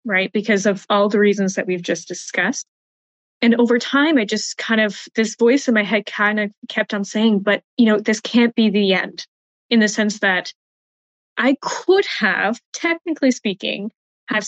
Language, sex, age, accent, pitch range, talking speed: English, female, 20-39, American, 190-225 Hz, 185 wpm